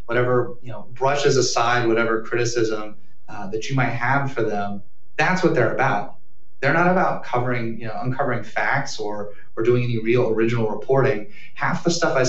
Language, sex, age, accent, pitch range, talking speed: English, male, 30-49, American, 115-140 Hz, 180 wpm